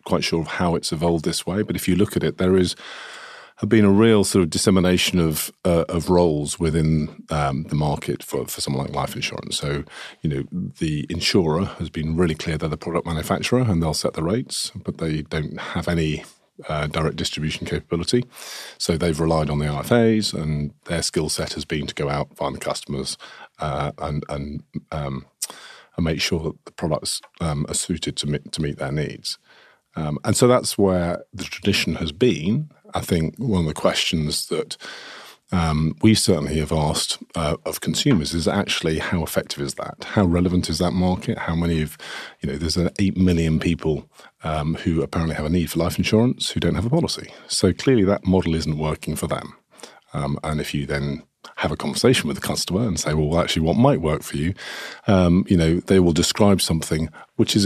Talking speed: 205 wpm